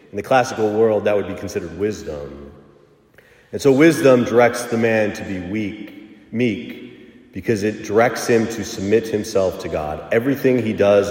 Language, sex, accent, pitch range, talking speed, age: English, male, American, 90-120 Hz, 165 wpm, 40-59